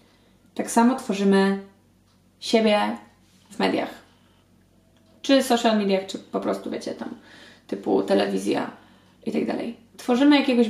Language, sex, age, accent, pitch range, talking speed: English, female, 20-39, Polish, 210-245 Hz, 120 wpm